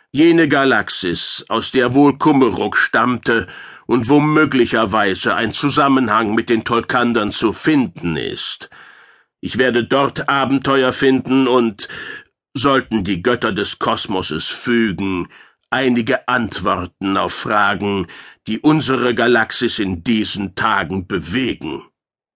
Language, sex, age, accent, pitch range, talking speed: German, male, 60-79, German, 120-145 Hz, 110 wpm